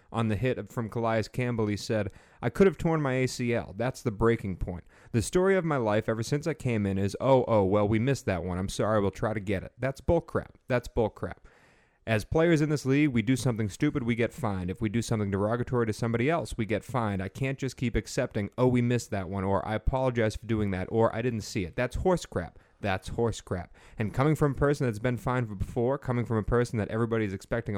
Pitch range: 105-130 Hz